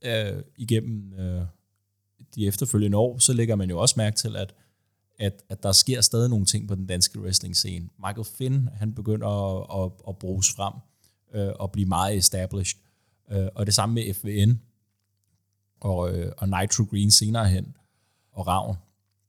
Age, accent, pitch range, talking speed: 30-49, native, 95-115 Hz, 170 wpm